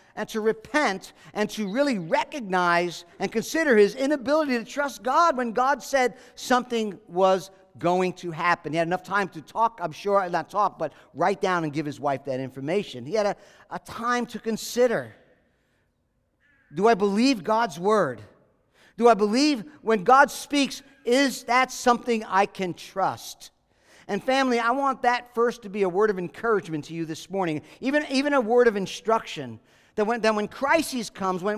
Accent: American